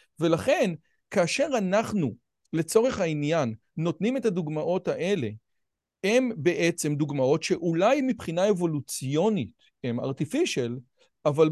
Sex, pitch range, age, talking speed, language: male, 155-215 Hz, 40-59, 95 wpm, Hebrew